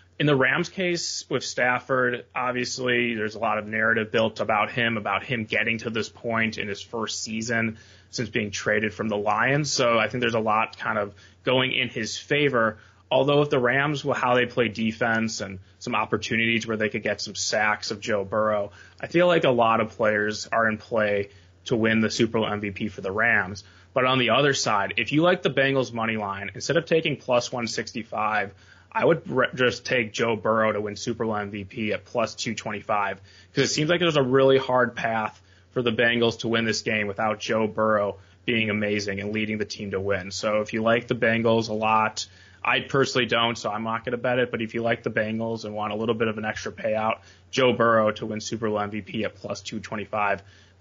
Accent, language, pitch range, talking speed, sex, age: American, English, 105-125 Hz, 215 wpm, male, 20-39